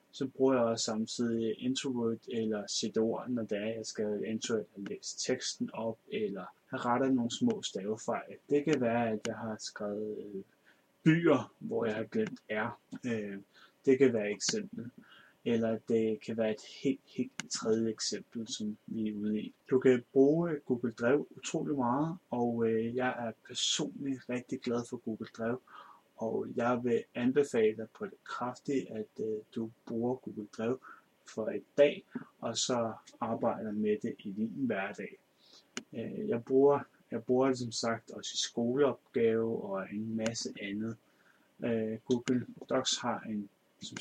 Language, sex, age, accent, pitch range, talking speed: Danish, male, 30-49, native, 110-135 Hz, 160 wpm